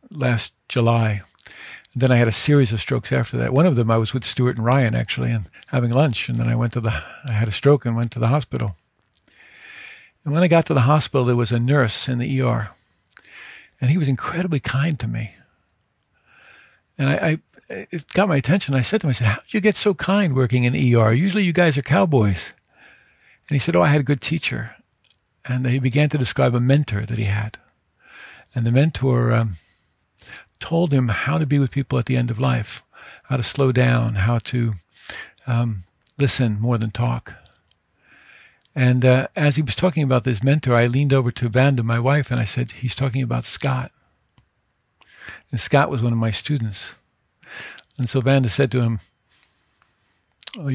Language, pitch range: English, 115-140 Hz